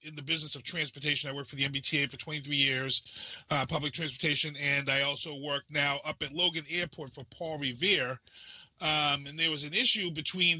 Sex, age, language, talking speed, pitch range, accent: male, 30-49, English, 200 wpm, 140-175 Hz, American